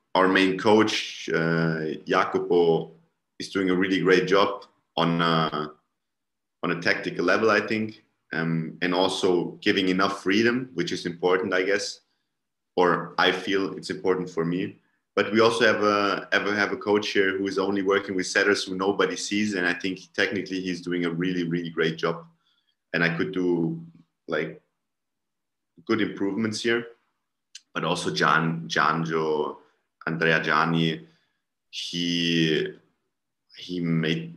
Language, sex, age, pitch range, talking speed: English, male, 30-49, 80-100 Hz, 150 wpm